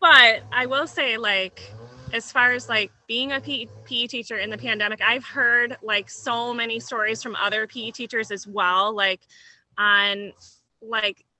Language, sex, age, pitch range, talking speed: English, female, 20-39, 195-250 Hz, 165 wpm